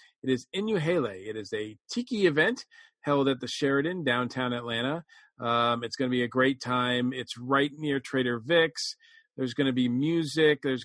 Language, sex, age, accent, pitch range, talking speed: English, male, 40-59, American, 125-150 Hz, 185 wpm